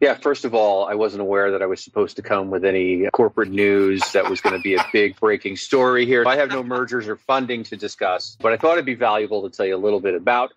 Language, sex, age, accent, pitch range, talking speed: English, male, 40-59, American, 95-130 Hz, 275 wpm